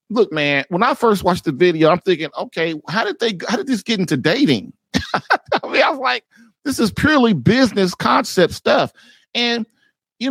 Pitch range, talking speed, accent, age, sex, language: 150-210 Hz, 190 wpm, American, 40-59, male, English